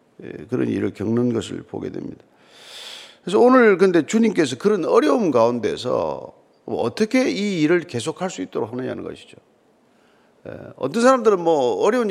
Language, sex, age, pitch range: Korean, male, 40-59, 175-245 Hz